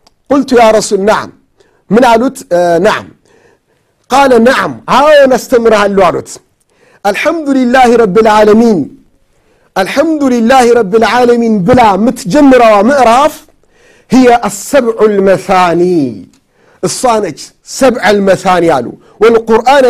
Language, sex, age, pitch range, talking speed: Amharic, male, 50-69, 210-255 Hz, 95 wpm